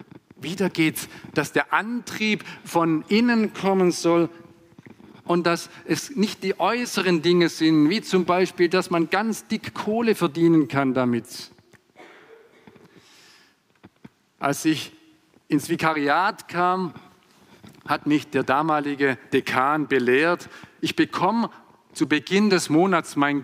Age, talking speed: 50-69, 120 wpm